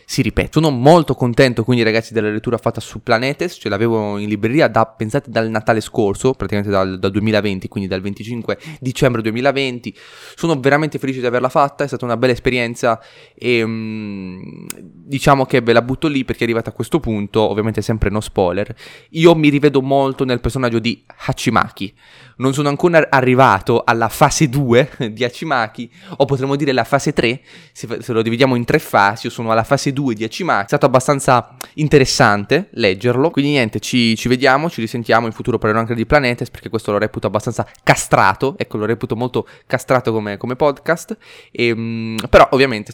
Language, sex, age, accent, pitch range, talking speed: Italian, male, 20-39, native, 110-135 Hz, 185 wpm